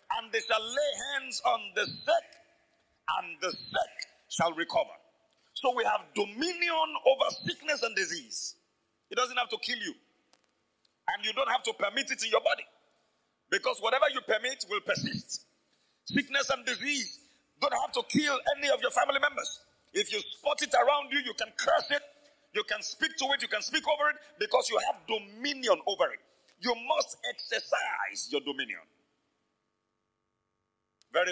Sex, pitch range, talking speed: male, 225-320 Hz, 165 wpm